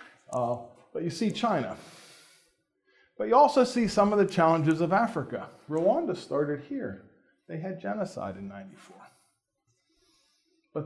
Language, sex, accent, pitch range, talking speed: English, male, American, 125-170 Hz, 135 wpm